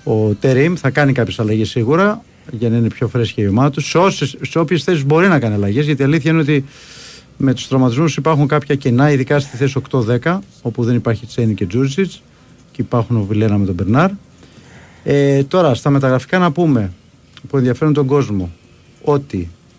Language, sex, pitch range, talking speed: Greek, male, 125-150 Hz, 190 wpm